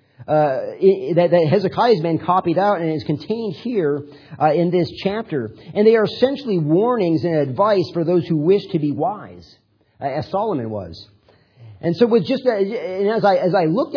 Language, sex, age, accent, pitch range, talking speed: English, male, 40-59, American, 155-195 Hz, 190 wpm